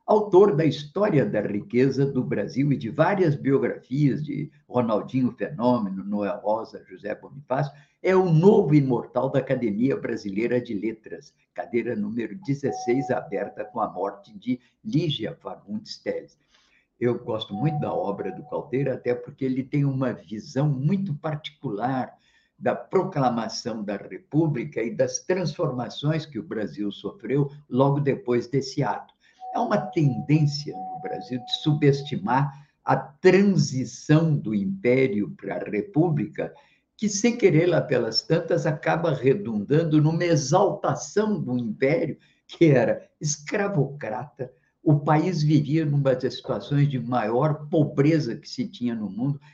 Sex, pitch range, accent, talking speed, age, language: male, 125-170 Hz, Brazilian, 135 wpm, 50-69, Portuguese